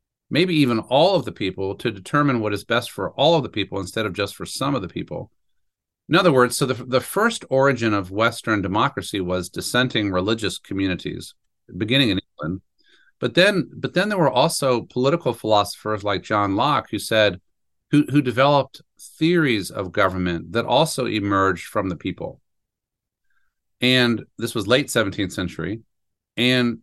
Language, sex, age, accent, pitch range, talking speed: English, male, 40-59, American, 100-130 Hz, 165 wpm